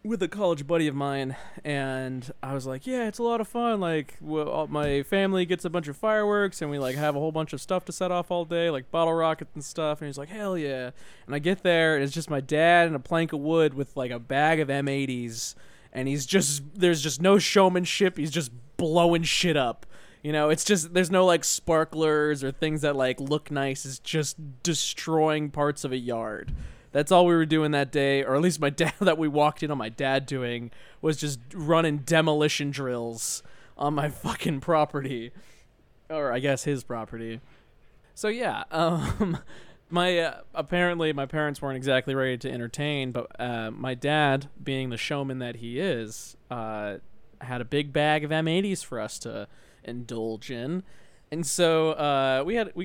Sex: male